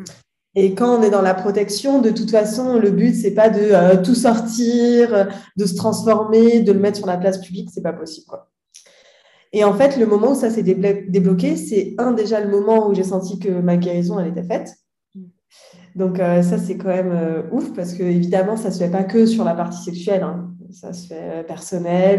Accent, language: French, French